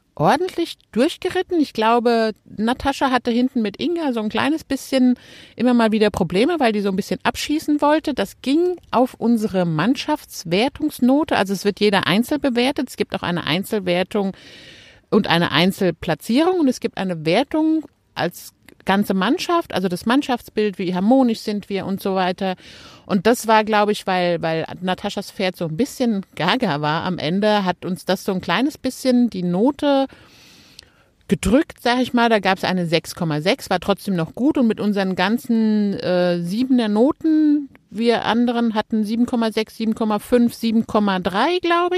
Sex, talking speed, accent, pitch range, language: female, 160 wpm, German, 190-255 Hz, German